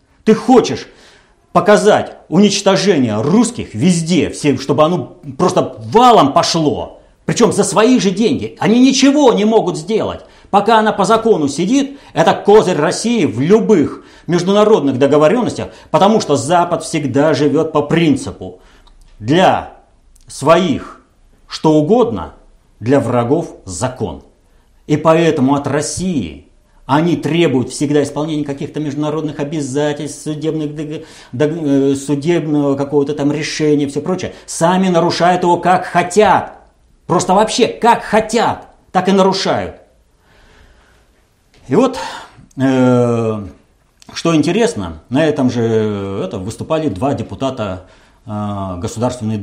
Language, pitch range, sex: Russian, 115-175 Hz, male